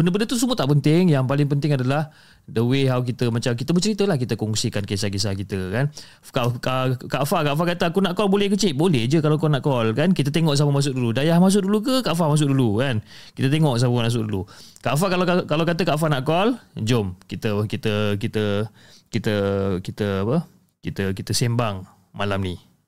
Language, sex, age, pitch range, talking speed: Malay, male, 20-39, 100-145 Hz, 210 wpm